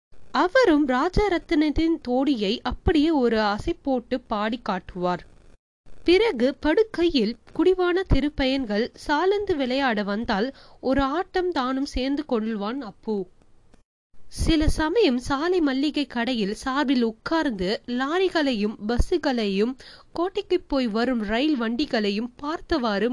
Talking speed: 100 wpm